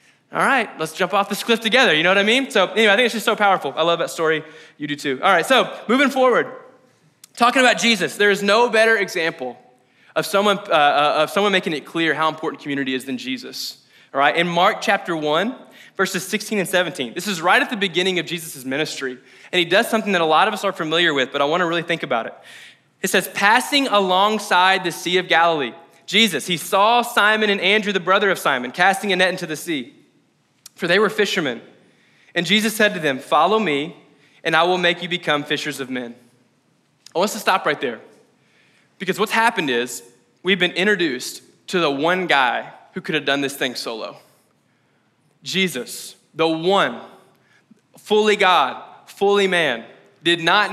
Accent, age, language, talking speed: American, 20-39, English, 200 wpm